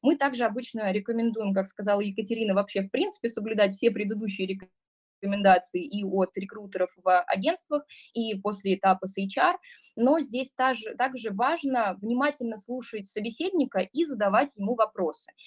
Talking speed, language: 140 wpm, Russian